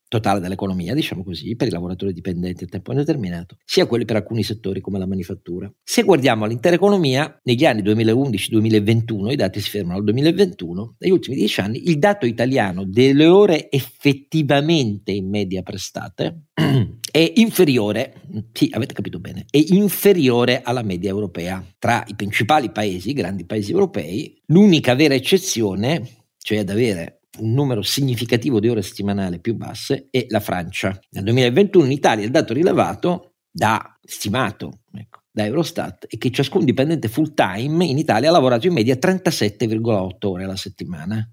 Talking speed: 160 wpm